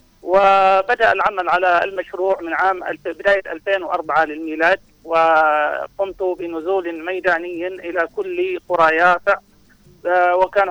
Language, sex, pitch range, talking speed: Arabic, male, 170-195 Hz, 100 wpm